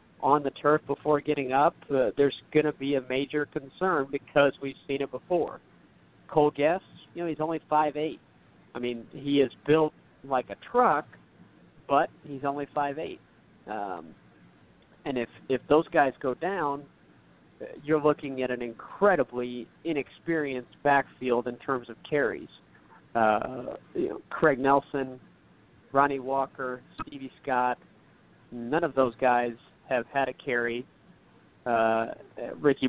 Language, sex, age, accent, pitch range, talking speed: English, male, 50-69, American, 120-145 Hz, 140 wpm